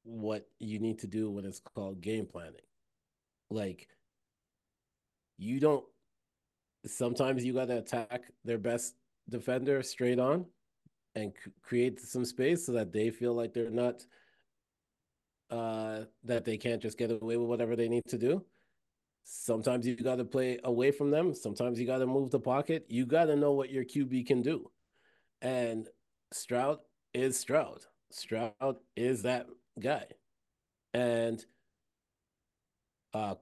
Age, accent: 30-49, American